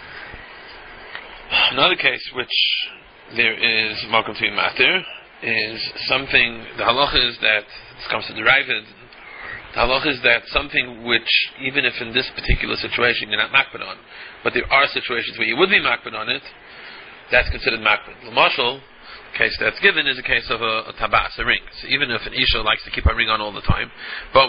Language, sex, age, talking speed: English, male, 30-49, 195 wpm